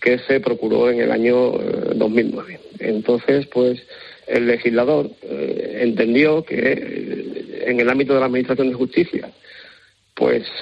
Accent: Spanish